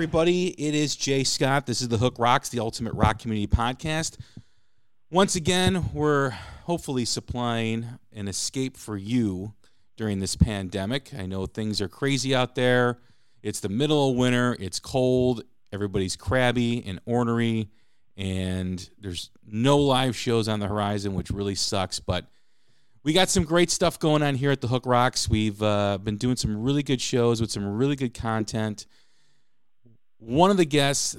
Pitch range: 100-130 Hz